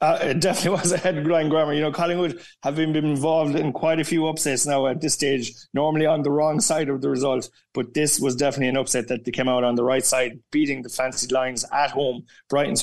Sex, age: male, 30-49